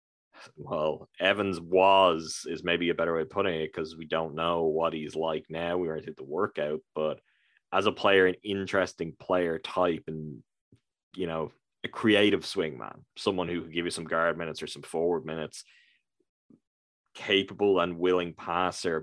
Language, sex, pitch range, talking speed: English, male, 80-95 Hz, 175 wpm